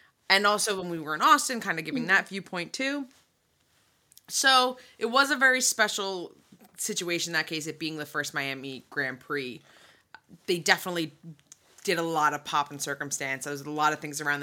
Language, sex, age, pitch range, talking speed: English, female, 20-39, 150-210 Hz, 190 wpm